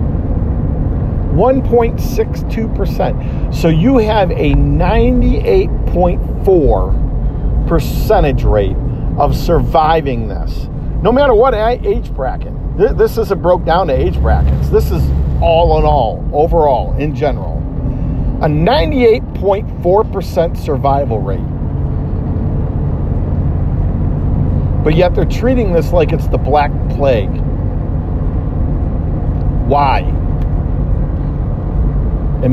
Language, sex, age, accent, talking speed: English, male, 50-69, American, 90 wpm